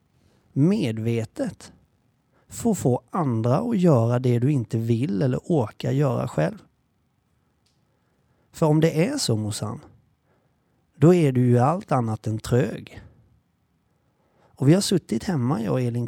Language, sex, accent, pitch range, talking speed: Swedish, male, native, 120-150 Hz, 140 wpm